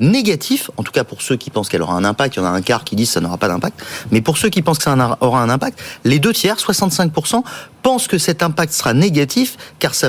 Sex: male